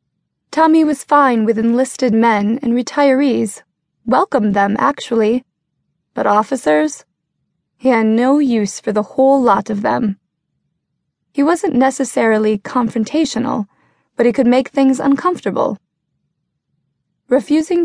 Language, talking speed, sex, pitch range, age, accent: English, 115 wpm, female, 210-270 Hz, 20-39, American